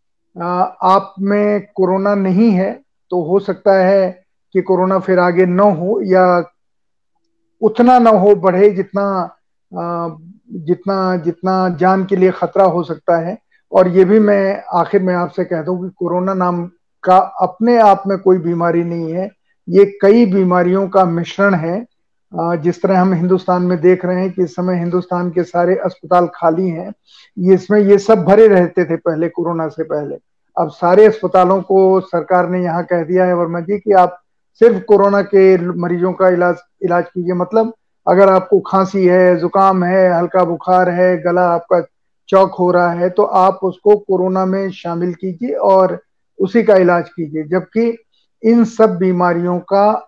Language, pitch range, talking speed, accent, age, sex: Hindi, 175-195 Hz, 170 wpm, native, 50-69, male